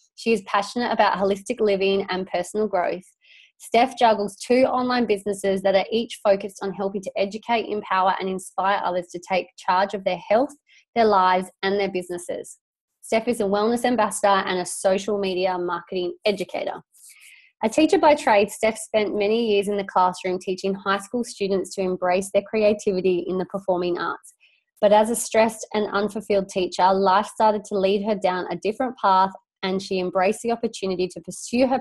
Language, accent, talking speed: English, Australian, 180 wpm